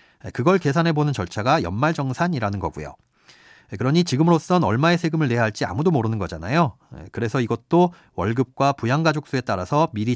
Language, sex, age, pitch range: Korean, male, 40-59, 110-170 Hz